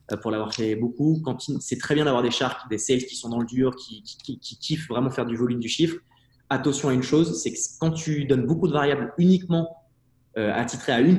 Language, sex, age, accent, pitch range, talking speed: French, male, 20-39, French, 120-145 Hz, 250 wpm